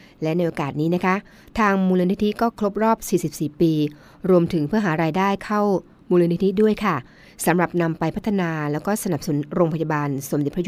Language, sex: Thai, female